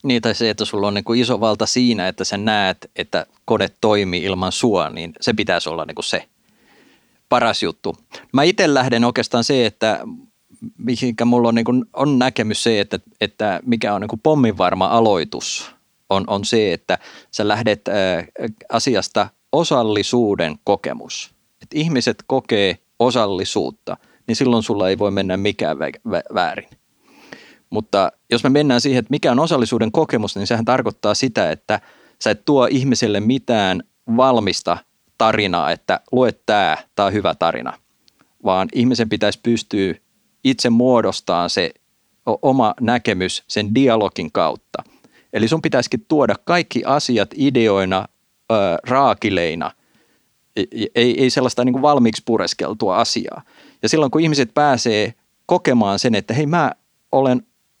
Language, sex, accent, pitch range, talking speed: Finnish, male, native, 105-130 Hz, 140 wpm